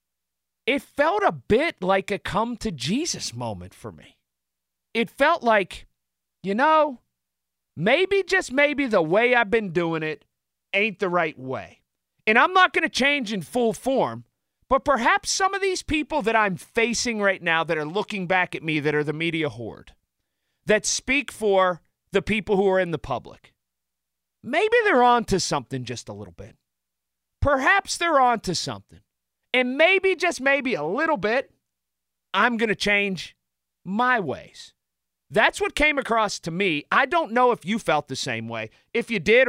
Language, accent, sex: English, American, male